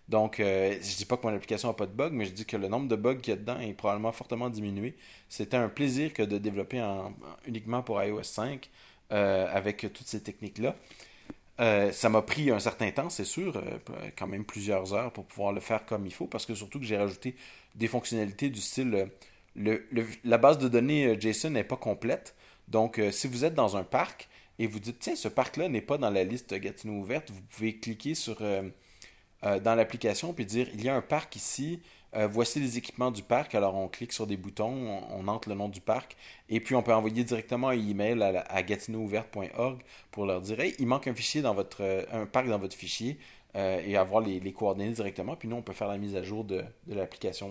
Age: 30-49